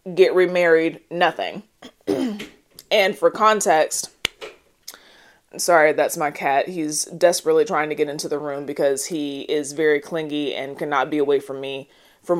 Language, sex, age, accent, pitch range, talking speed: English, female, 20-39, American, 155-190 Hz, 150 wpm